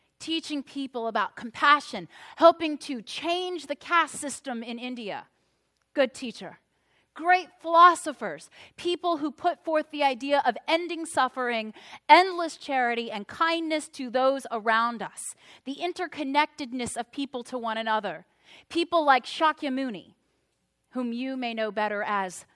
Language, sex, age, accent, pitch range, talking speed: English, female, 30-49, American, 225-305 Hz, 130 wpm